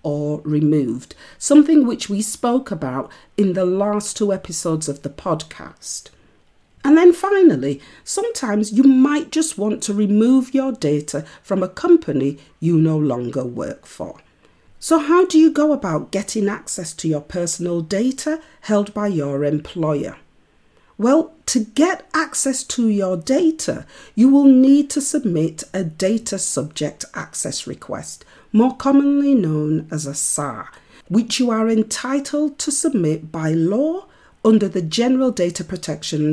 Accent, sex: British, female